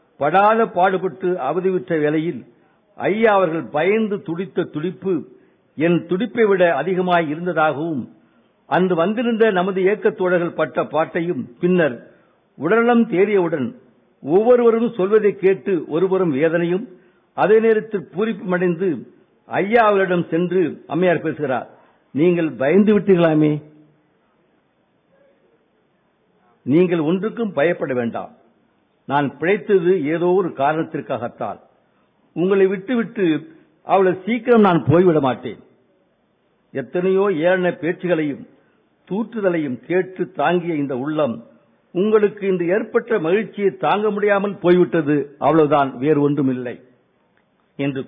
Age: 60-79